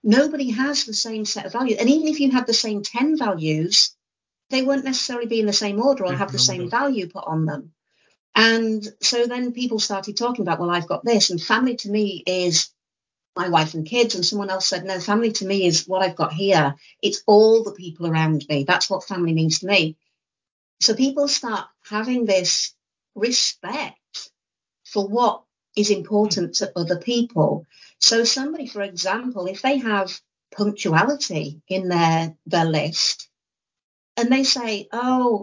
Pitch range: 185-245 Hz